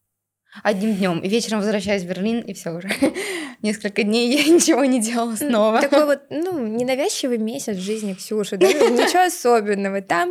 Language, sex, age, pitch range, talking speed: Russian, female, 20-39, 210-255 Hz, 165 wpm